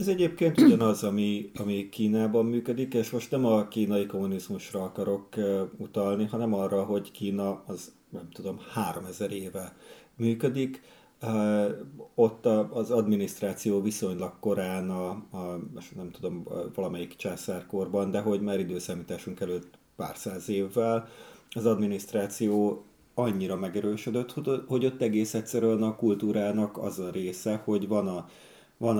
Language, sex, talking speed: Hungarian, male, 125 wpm